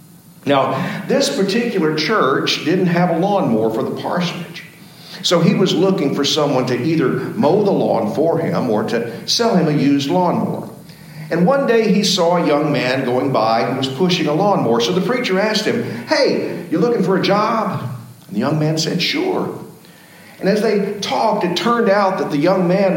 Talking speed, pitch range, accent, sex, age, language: 195 wpm, 150-195 Hz, American, male, 50-69, English